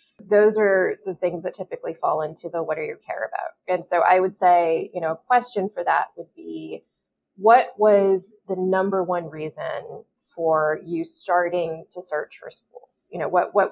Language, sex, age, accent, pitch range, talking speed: English, female, 20-39, American, 170-210 Hz, 195 wpm